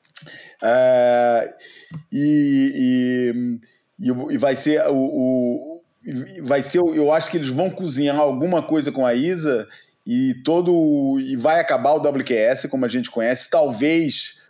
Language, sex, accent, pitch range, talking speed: Portuguese, male, Brazilian, 130-175 Hz, 135 wpm